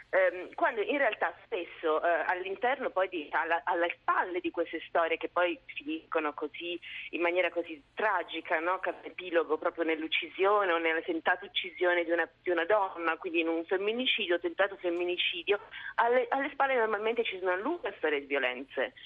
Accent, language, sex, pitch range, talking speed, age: native, Italian, female, 165-245 Hz, 160 wpm, 30-49